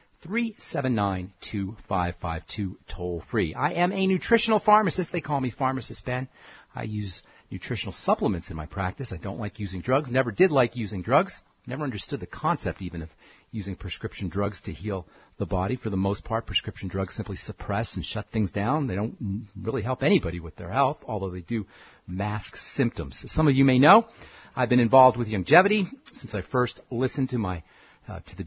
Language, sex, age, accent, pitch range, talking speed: English, male, 40-59, American, 95-130 Hz, 200 wpm